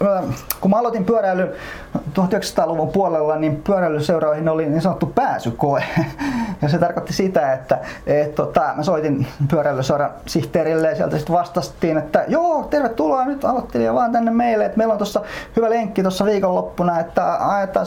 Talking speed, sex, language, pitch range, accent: 150 wpm, male, Finnish, 155-210 Hz, native